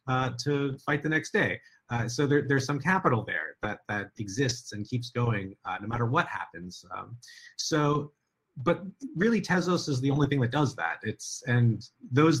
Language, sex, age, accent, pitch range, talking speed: English, male, 30-49, American, 115-145 Hz, 190 wpm